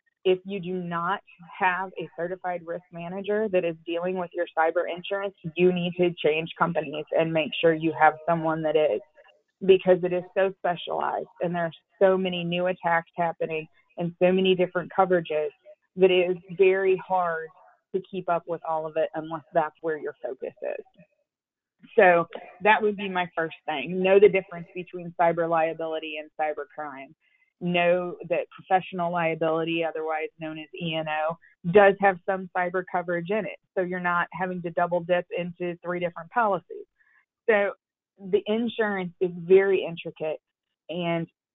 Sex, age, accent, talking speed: female, 20-39, American, 165 wpm